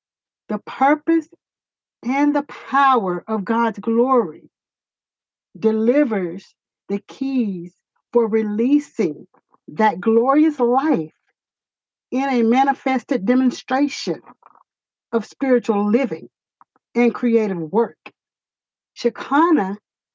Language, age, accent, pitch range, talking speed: English, 60-79, American, 210-275 Hz, 80 wpm